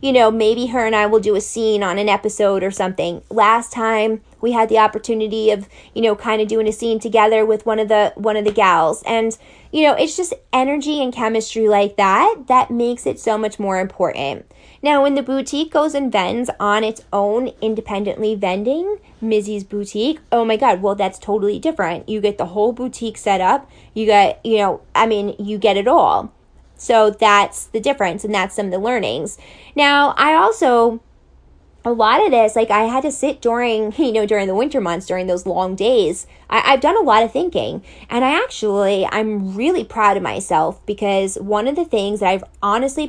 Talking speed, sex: 210 wpm, female